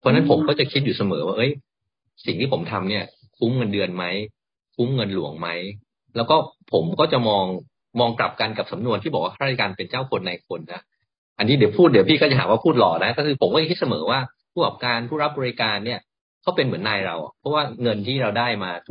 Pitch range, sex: 100-125 Hz, male